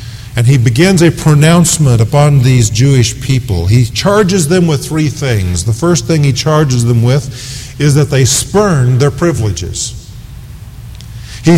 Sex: male